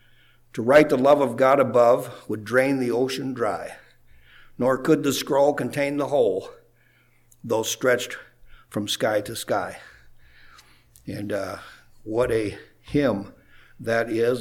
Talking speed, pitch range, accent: 135 wpm, 125-155 Hz, American